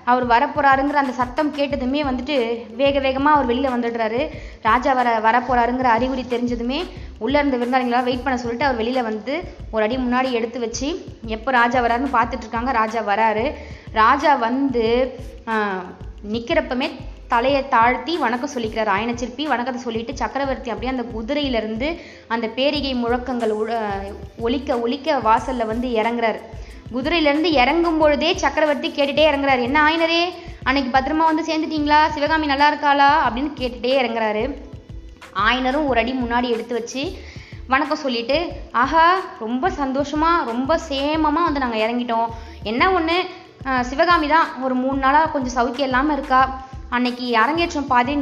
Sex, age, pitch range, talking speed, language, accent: female, 20-39, 235-290 Hz, 135 wpm, Tamil, native